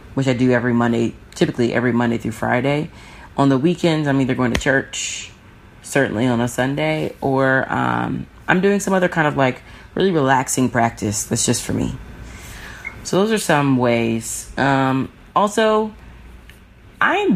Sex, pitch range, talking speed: female, 120-150 Hz, 160 wpm